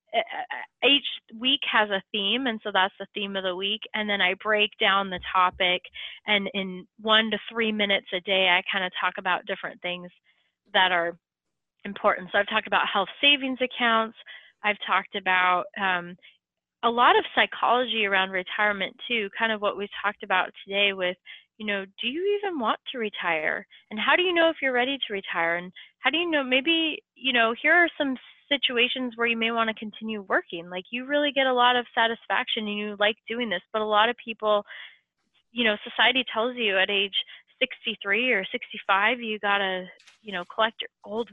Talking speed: 195 wpm